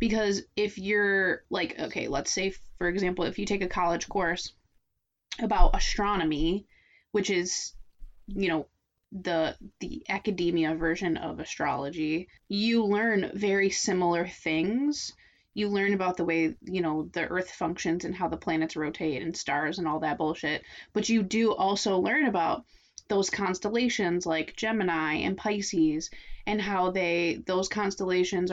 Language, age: English, 20-39